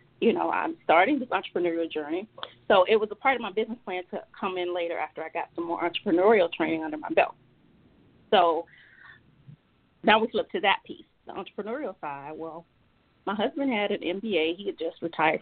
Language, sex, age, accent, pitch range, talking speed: English, female, 30-49, American, 170-235 Hz, 195 wpm